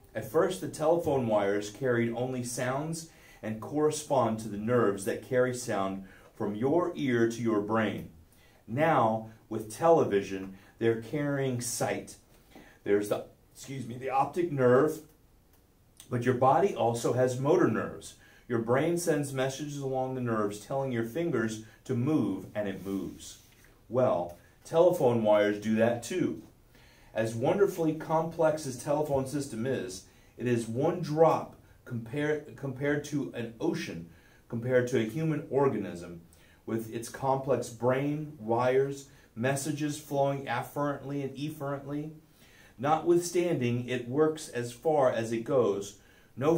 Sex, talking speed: male, 135 wpm